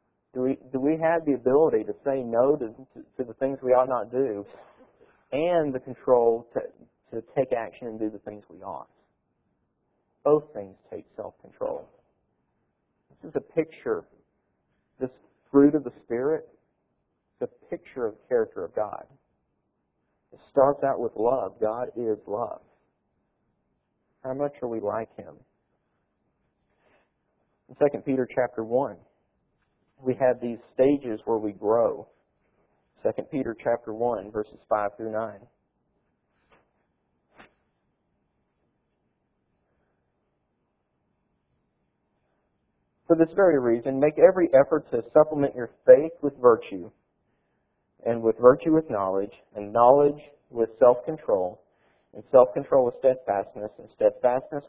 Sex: male